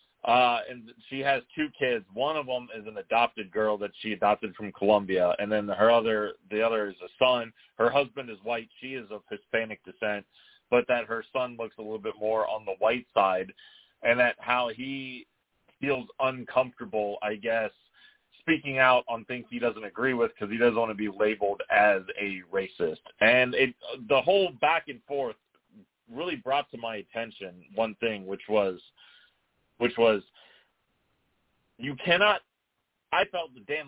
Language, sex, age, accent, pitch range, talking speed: English, male, 30-49, American, 105-130 Hz, 175 wpm